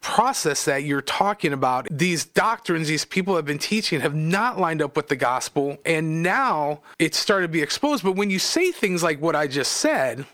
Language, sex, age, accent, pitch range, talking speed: English, male, 40-59, American, 165-225 Hz, 210 wpm